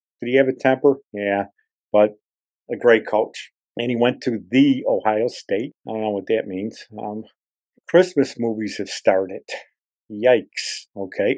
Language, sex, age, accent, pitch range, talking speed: English, male, 50-69, American, 105-130 Hz, 160 wpm